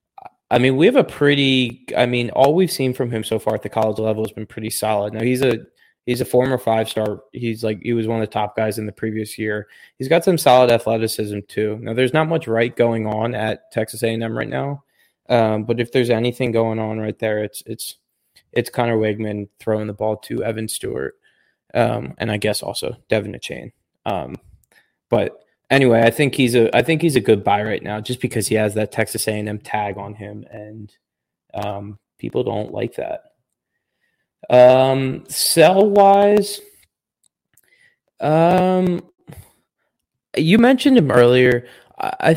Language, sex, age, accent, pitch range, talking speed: English, male, 20-39, American, 110-140 Hz, 185 wpm